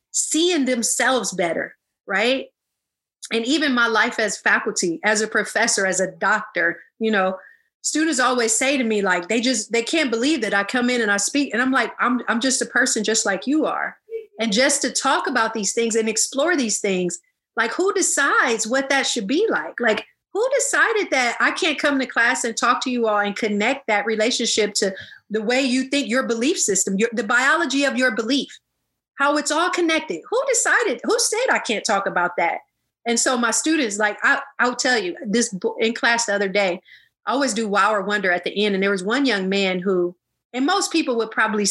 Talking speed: 210 wpm